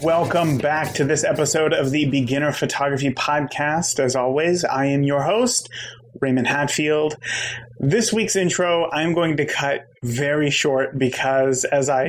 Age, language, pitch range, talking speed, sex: 30-49, English, 125-150 Hz, 145 wpm, male